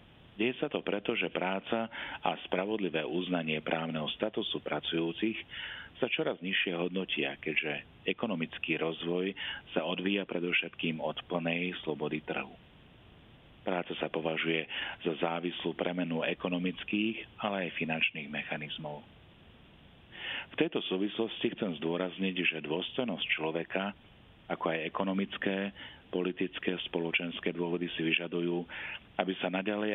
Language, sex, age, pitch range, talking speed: Slovak, male, 40-59, 85-100 Hz, 110 wpm